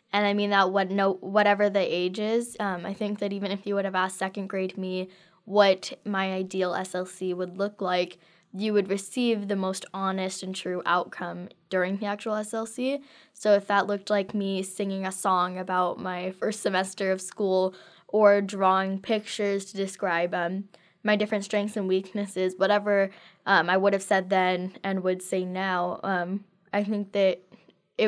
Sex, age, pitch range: female, 10-29, 185-205 Hz